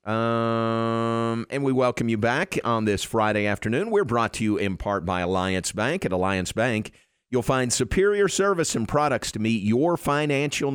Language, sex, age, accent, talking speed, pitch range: English, male, 50-69, American, 180 wpm, 95-120 Hz